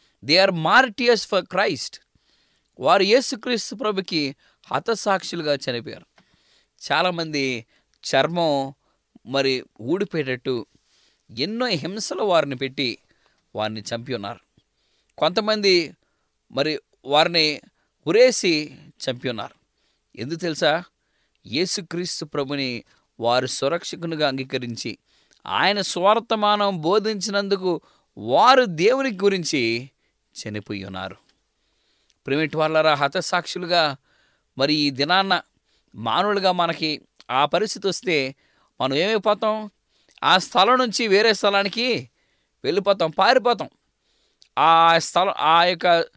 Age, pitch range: 20-39, 135-205 Hz